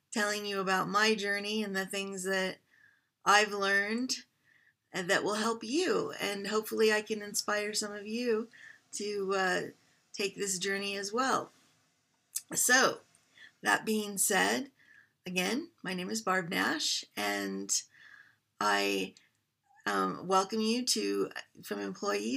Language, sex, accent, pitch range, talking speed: English, female, American, 190-220 Hz, 130 wpm